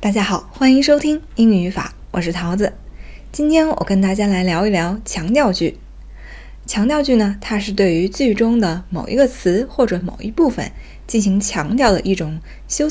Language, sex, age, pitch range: Chinese, female, 20-39, 165-235 Hz